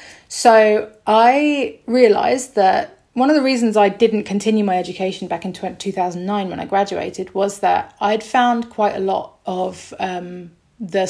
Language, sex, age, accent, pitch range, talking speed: English, female, 30-49, British, 190-225 Hz, 155 wpm